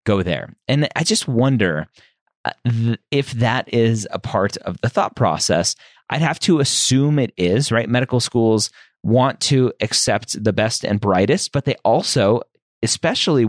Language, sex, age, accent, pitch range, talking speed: English, male, 30-49, American, 100-130 Hz, 155 wpm